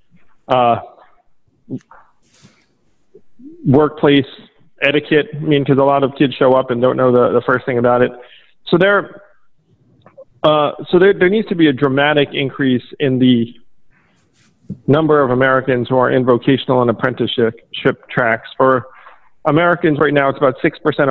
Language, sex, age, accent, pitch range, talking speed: English, male, 40-59, American, 125-145 Hz, 140 wpm